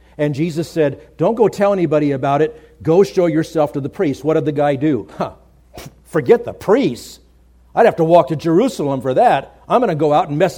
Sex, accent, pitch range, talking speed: male, American, 115-165 Hz, 215 wpm